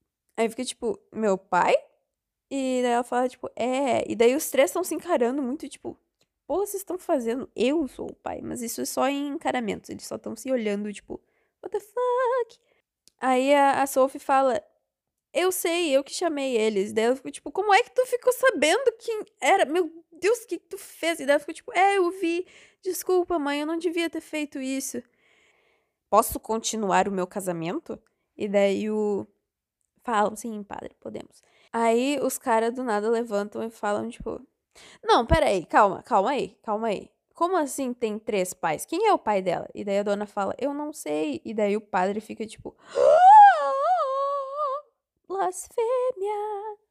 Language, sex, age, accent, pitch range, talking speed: Portuguese, female, 10-29, Brazilian, 230-360 Hz, 185 wpm